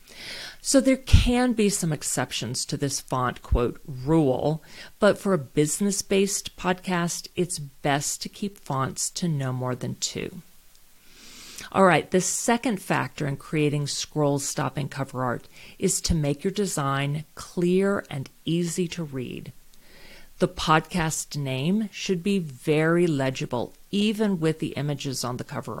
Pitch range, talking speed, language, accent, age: 145-190 Hz, 140 wpm, English, American, 40-59